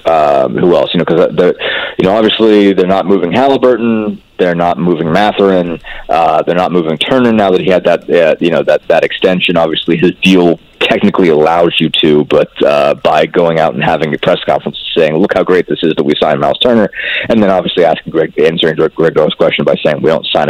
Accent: American